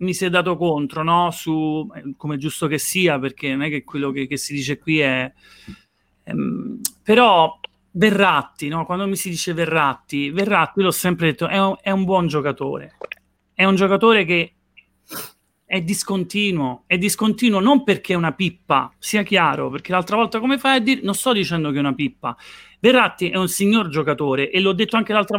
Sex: male